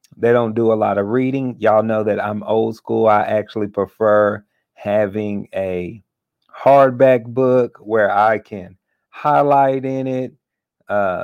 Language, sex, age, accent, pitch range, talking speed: English, male, 40-59, American, 105-125 Hz, 145 wpm